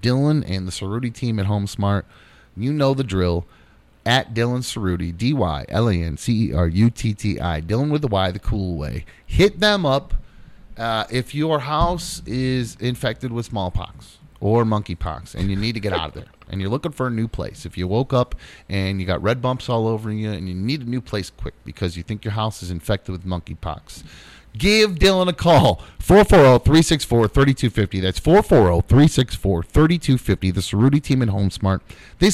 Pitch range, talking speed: 100-145 Hz, 195 wpm